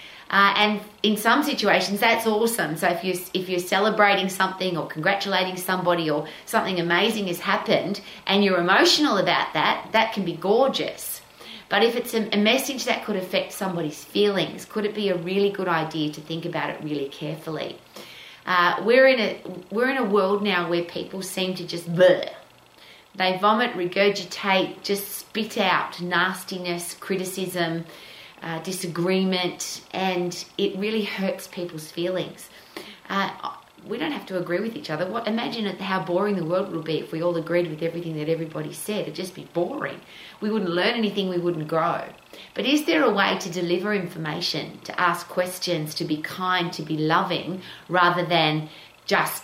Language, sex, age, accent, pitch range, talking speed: English, female, 30-49, Australian, 165-200 Hz, 175 wpm